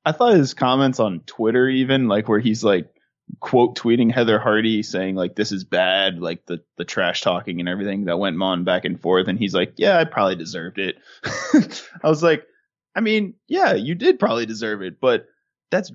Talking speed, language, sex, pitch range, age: 205 wpm, English, male, 110-165 Hz, 20-39